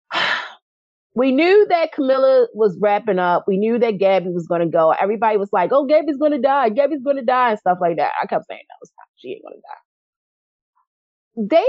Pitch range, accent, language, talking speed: 190-280 Hz, American, English, 220 wpm